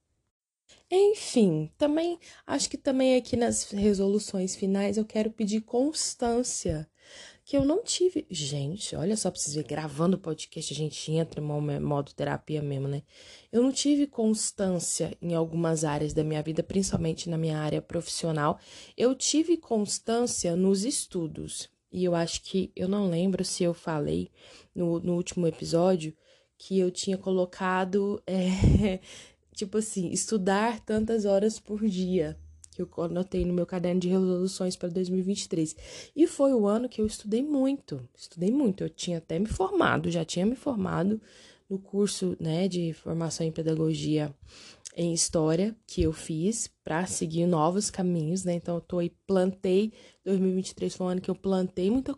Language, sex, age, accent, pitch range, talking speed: Portuguese, female, 20-39, Brazilian, 165-220 Hz, 160 wpm